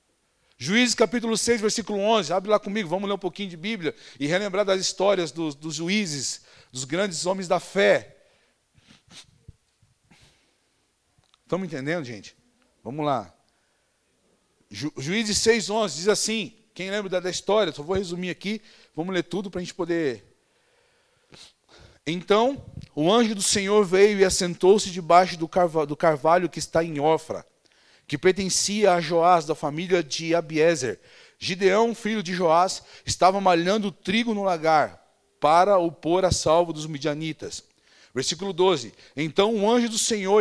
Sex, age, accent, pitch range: male, 40-59, Brazilian, 170-215 Hz